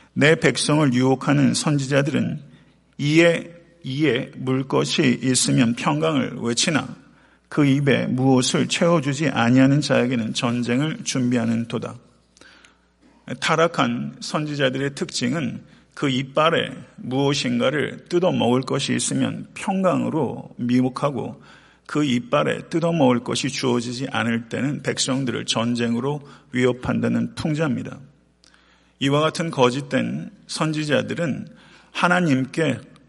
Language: Korean